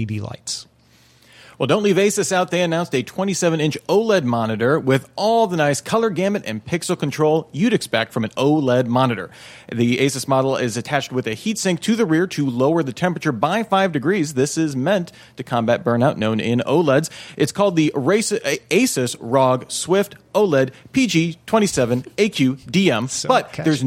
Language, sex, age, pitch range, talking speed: English, male, 40-59, 125-190 Hz, 170 wpm